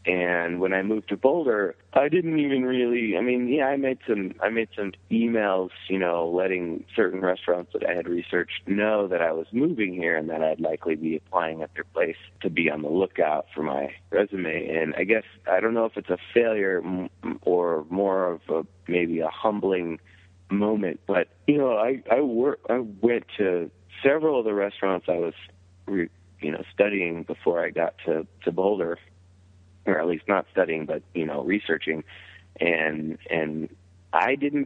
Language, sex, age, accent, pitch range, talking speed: English, male, 30-49, American, 85-105 Hz, 185 wpm